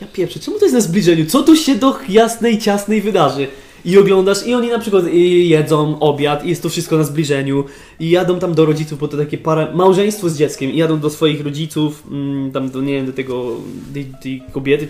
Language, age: Polish, 20-39